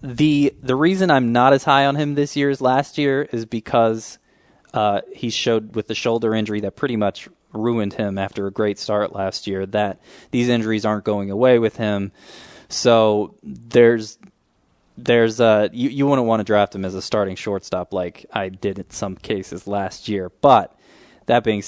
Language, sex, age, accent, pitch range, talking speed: English, male, 20-39, American, 100-115 Hz, 190 wpm